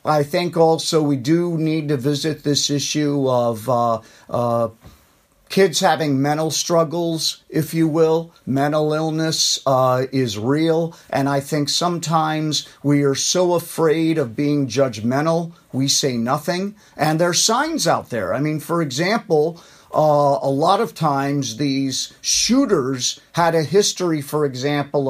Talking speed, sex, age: 145 wpm, male, 50-69